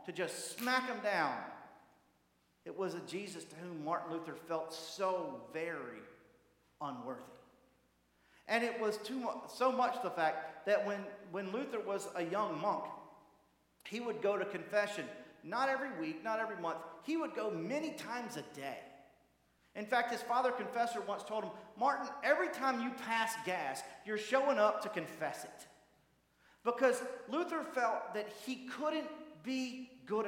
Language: English